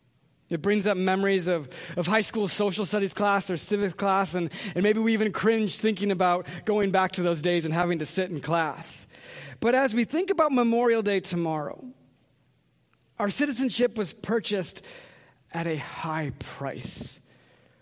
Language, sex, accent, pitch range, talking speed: English, male, American, 170-210 Hz, 165 wpm